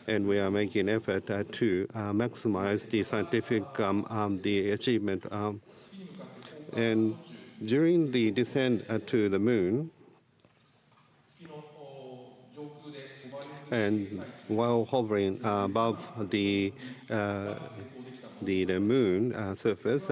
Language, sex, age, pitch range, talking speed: English, male, 50-69, 100-120 Hz, 105 wpm